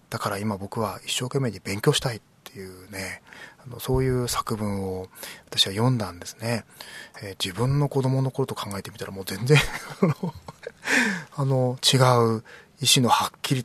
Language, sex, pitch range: Japanese, male, 105-135 Hz